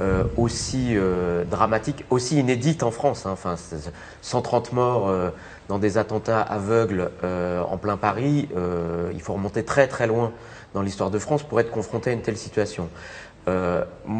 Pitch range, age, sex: 100-135 Hz, 30-49, male